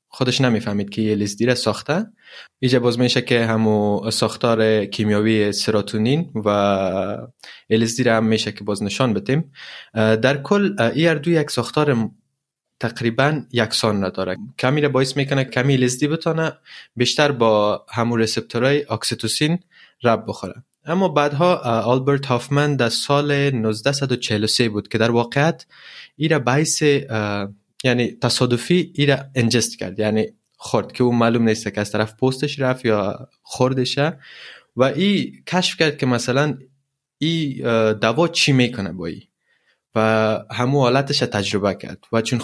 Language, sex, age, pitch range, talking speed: Persian, male, 20-39, 110-140 Hz, 135 wpm